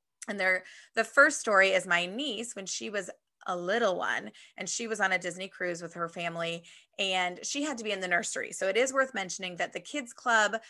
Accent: American